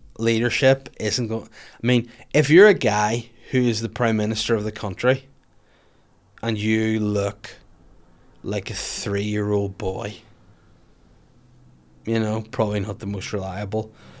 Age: 20-39